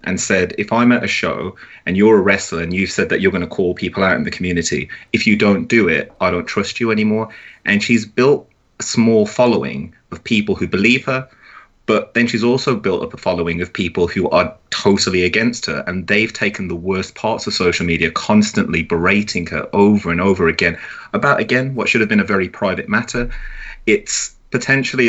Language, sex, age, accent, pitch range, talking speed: English, male, 30-49, British, 95-120 Hz, 210 wpm